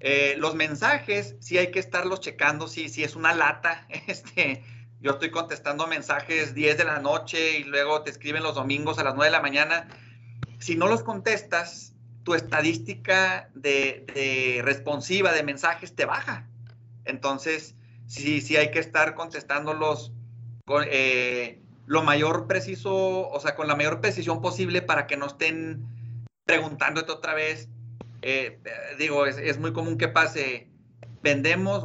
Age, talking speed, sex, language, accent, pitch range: 40-59, 145 wpm, male, Spanish, Mexican, 120-160 Hz